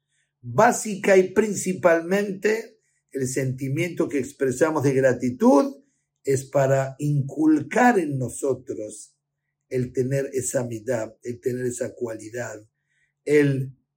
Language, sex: Spanish, male